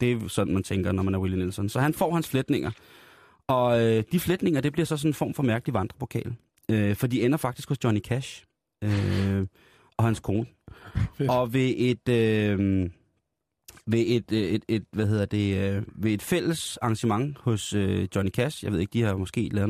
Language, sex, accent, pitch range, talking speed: Danish, male, native, 105-130 Hz, 205 wpm